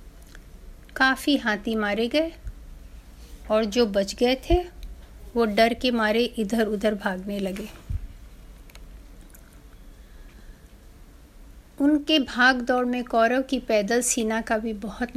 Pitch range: 195-260 Hz